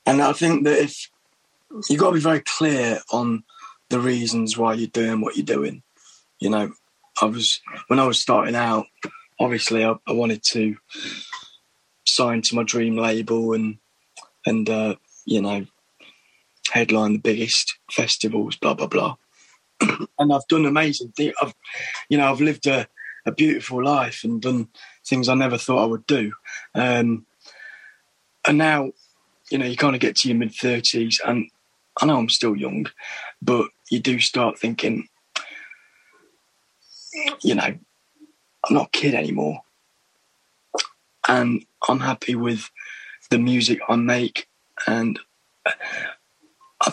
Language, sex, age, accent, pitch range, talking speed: English, male, 20-39, British, 115-150 Hz, 145 wpm